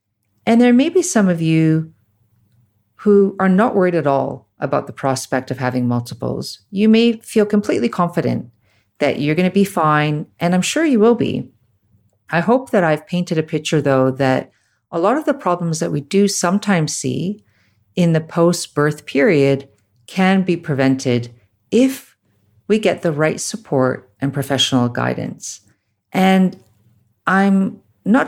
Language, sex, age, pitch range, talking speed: English, female, 50-69, 130-190 Hz, 155 wpm